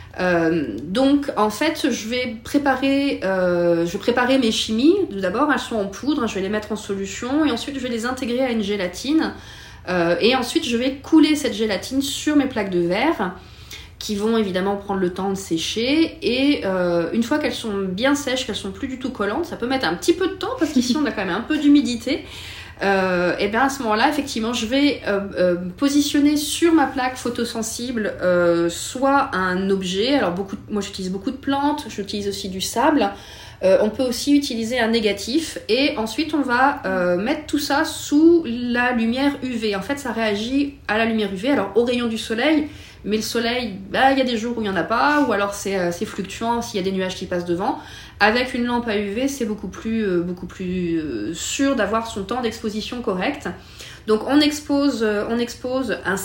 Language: French